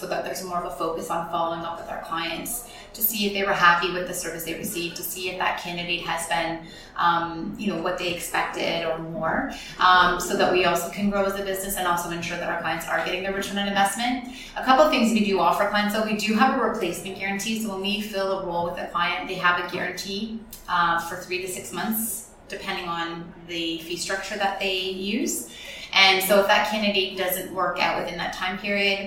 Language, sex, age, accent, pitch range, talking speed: English, female, 20-39, American, 175-200 Hz, 235 wpm